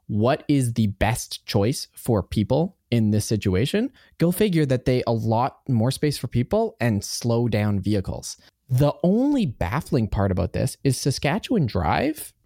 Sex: male